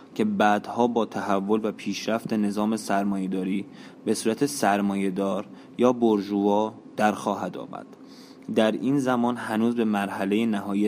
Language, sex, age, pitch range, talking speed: Persian, male, 20-39, 100-115 Hz, 120 wpm